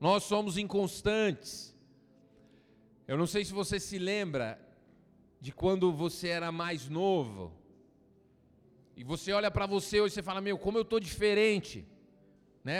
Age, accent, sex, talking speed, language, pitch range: 40-59, Brazilian, male, 140 wpm, Portuguese, 180-230 Hz